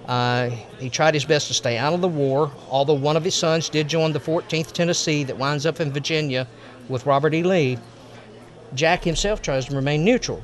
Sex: male